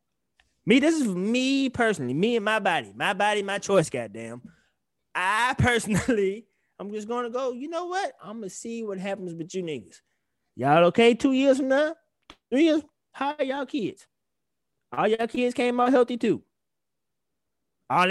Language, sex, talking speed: English, male, 170 wpm